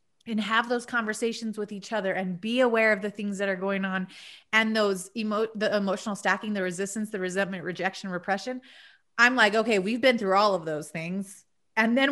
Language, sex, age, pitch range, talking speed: English, female, 30-49, 195-245 Hz, 205 wpm